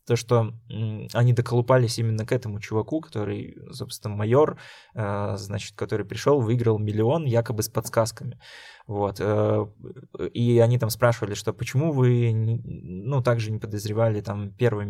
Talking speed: 135 wpm